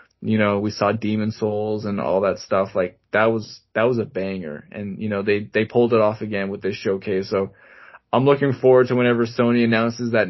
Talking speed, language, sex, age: 220 wpm, English, male, 20-39